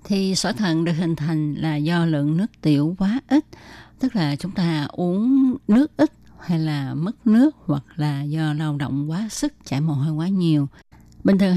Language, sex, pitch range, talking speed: Vietnamese, female, 150-195 Hz, 195 wpm